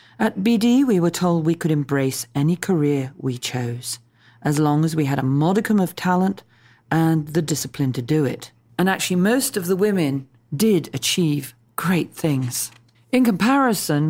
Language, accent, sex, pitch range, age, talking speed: English, British, female, 135-175 Hz, 40-59, 165 wpm